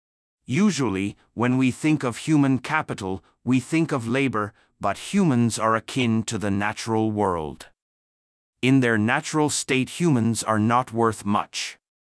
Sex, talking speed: male, 140 wpm